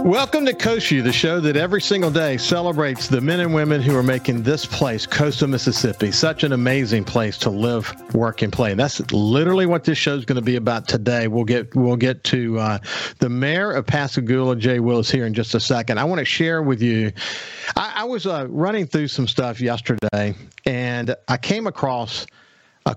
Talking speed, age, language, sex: 205 wpm, 50-69, English, male